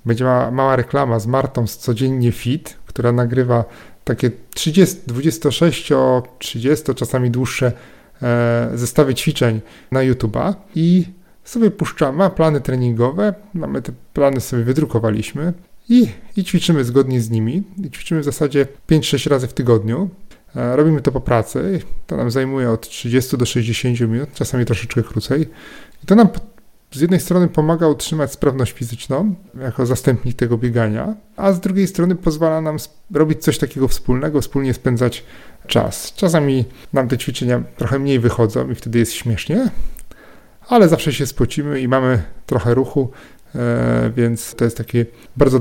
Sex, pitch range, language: male, 120-155 Hz, Polish